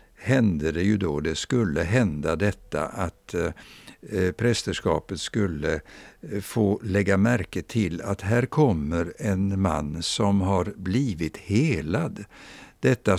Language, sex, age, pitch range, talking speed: Swedish, male, 60-79, 95-115 Hz, 120 wpm